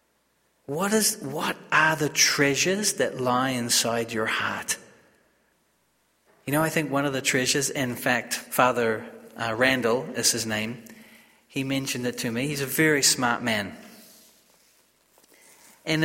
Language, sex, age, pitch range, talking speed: English, male, 30-49, 120-150 Hz, 140 wpm